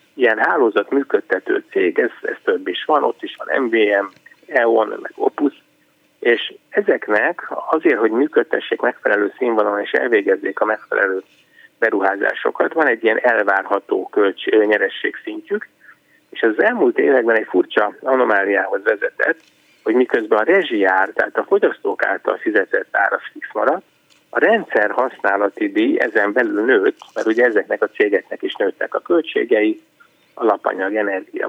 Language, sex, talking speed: Hungarian, male, 135 wpm